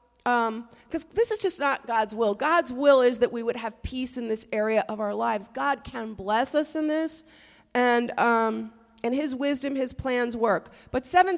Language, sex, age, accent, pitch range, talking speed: English, female, 40-59, American, 205-260 Hz, 195 wpm